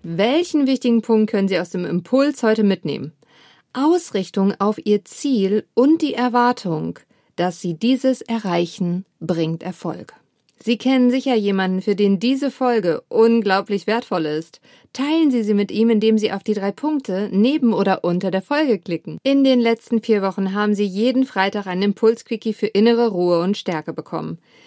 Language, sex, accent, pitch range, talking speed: German, female, German, 195-250 Hz, 165 wpm